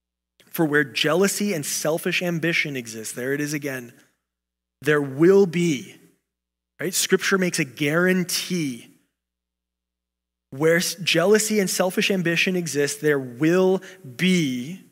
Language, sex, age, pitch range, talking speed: English, male, 20-39, 125-170 Hz, 115 wpm